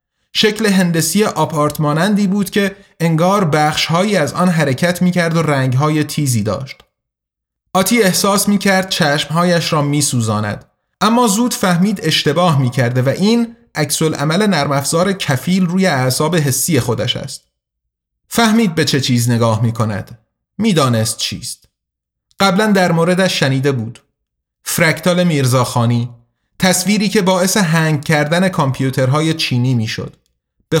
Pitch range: 125-180 Hz